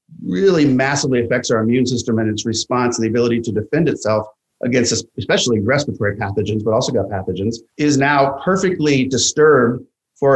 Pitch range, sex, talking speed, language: 115-135 Hz, male, 160 wpm, English